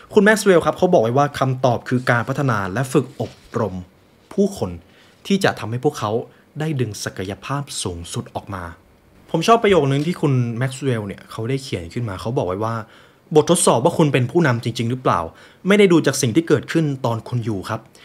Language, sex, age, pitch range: Thai, male, 20-39, 105-150 Hz